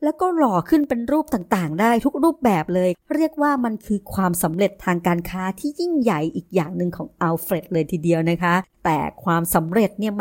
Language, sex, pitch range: Thai, male, 180-245 Hz